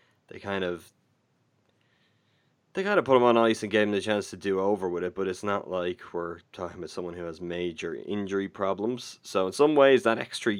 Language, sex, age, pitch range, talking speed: English, male, 20-39, 95-120 Hz, 220 wpm